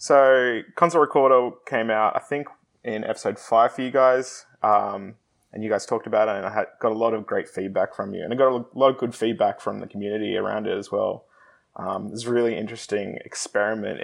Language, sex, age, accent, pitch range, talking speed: English, male, 20-39, Australian, 105-125 Hz, 220 wpm